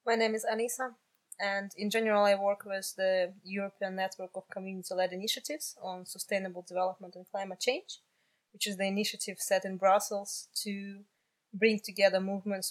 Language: Russian